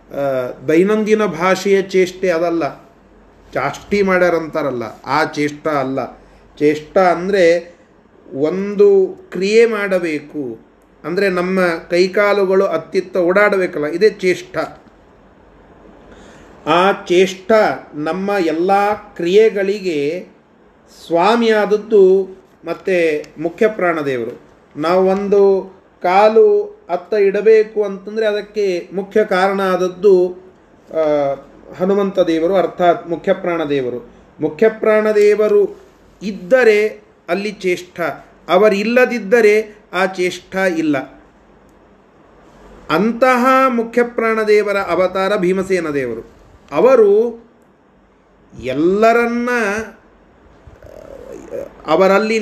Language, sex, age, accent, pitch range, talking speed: Kannada, male, 30-49, native, 175-220 Hz, 70 wpm